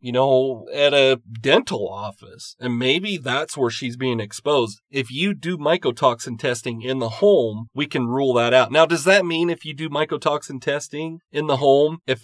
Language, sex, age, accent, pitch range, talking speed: English, male, 40-59, American, 120-155 Hz, 190 wpm